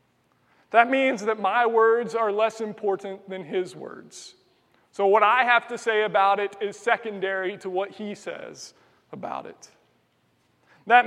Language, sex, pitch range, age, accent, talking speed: English, male, 190-230 Hz, 30-49, American, 150 wpm